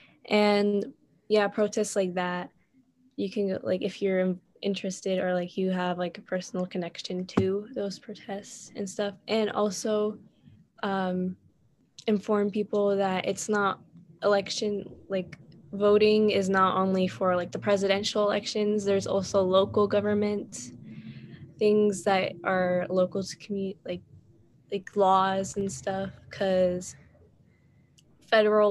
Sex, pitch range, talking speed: female, 185-210 Hz, 125 wpm